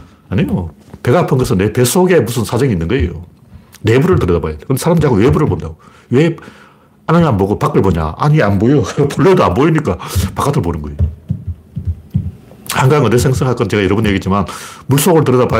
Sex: male